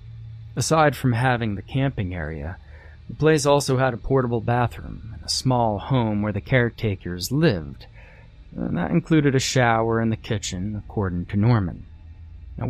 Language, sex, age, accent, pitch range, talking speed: English, male, 30-49, American, 90-120 Hz, 155 wpm